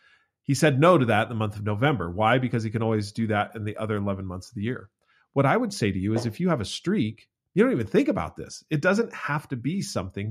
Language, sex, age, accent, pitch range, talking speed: English, male, 40-59, American, 105-140 Hz, 285 wpm